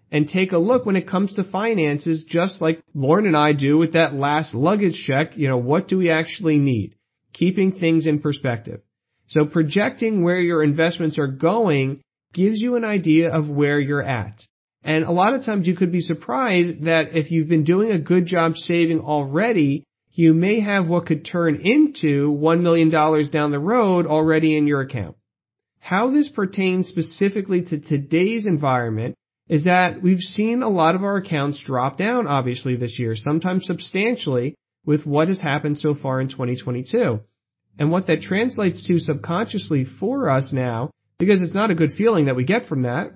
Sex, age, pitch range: male, 40-59, 145-185 Hz